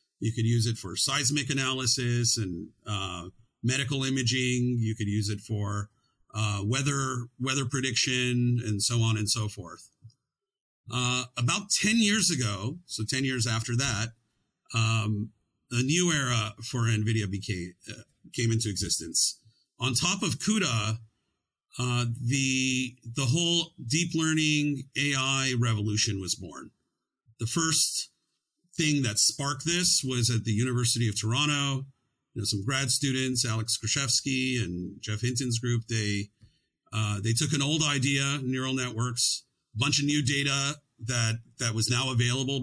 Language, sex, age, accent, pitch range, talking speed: English, male, 50-69, American, 110-135 Hz, 145 wpm